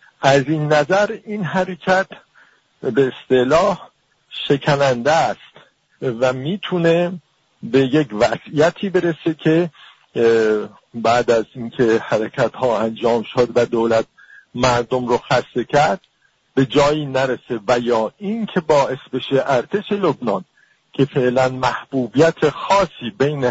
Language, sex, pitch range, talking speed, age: English, male, 125-170 Hz, 115 wpm, 50-69